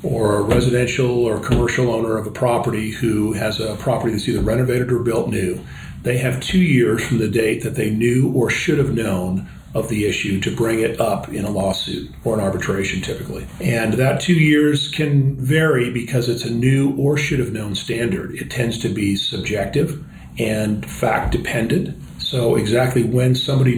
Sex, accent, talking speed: male, American, 185 wpm